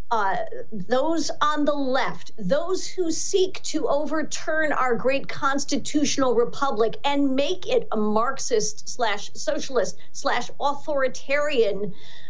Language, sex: English, female